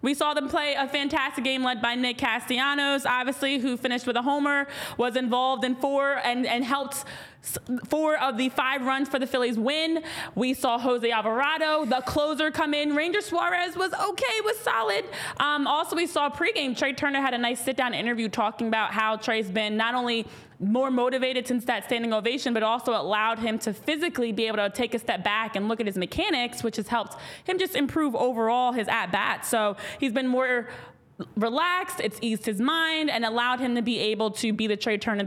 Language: English